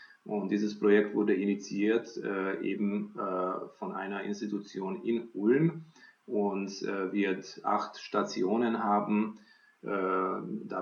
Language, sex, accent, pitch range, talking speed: German, male, German, 100-115 Hz, 115 wpm